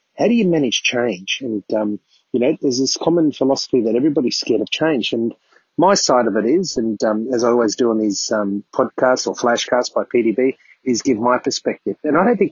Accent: Australian